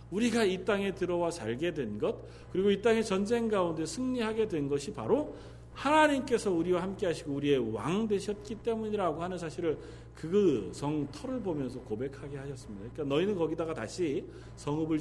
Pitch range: 115-185 Hz